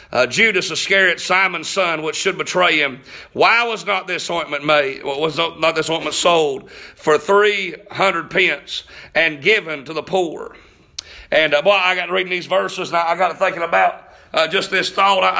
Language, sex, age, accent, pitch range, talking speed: English, male, 40-59, American, 160-200 Hz, 185 wpm